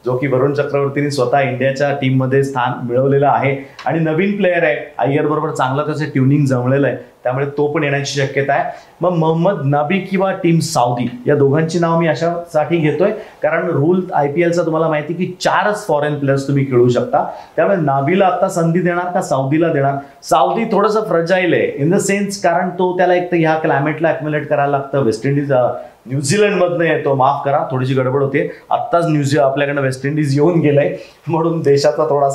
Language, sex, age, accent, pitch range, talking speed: Marathi, male, 30-49, native, 140-170 Hz, 180 wpm